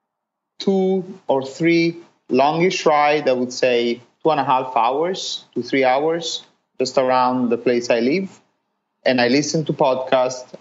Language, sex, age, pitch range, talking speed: English, male, 30-49, 120-150 Hz, 155 wpm